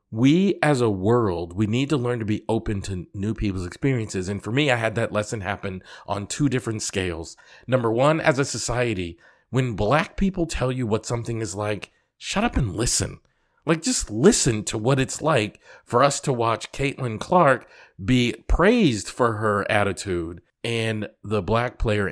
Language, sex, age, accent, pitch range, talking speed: English, male, 40-59, American, 95-130 Hz, 180 wpm